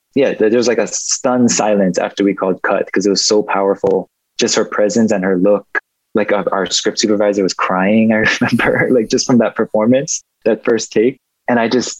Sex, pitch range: male, 100-110 Hz